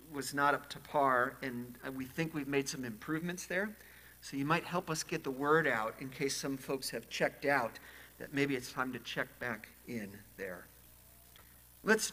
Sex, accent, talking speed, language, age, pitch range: male, American, 195 wpm, English, 50-69, 120-155 Hz